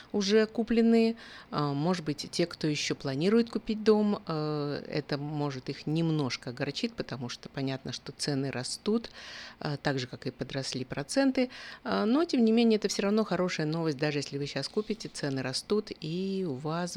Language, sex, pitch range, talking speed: Russian, female, 140-195 Hz, 165 wpm